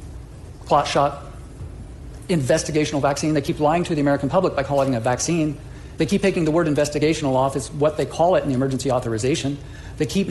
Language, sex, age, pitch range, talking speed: English, male, 40-59, 140-170 Hz, 200 wpm